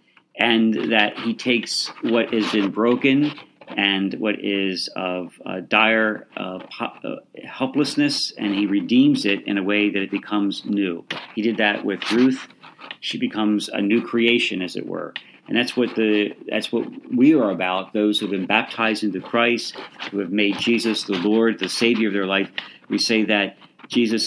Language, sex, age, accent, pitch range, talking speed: English, male, 50-69, American, 100-120 Hz, 175 wpm